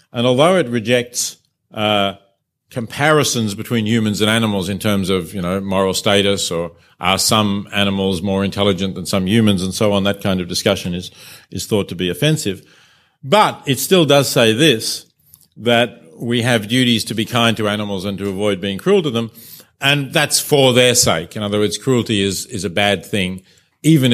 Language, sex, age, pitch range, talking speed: English, male, 50-69, 95-120 Hz, 190 wpm